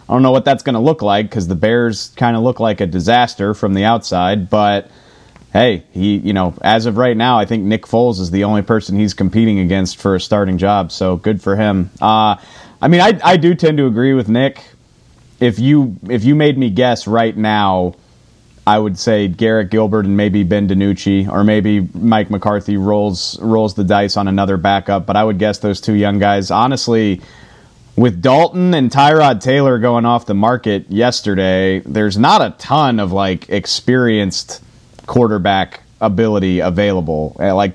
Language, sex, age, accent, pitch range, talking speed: English, male, 30-49, American, 95-120 Hz, 190 wpm